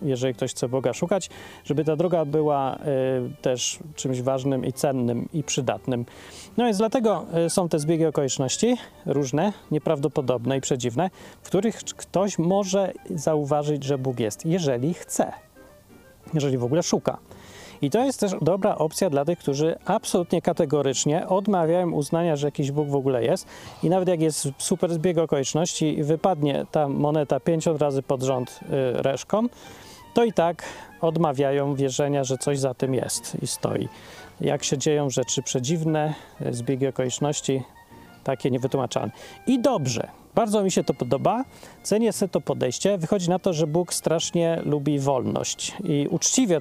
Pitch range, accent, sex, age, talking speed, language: 135-180 Hz, native, male, 30-49, 155 wpm, Polish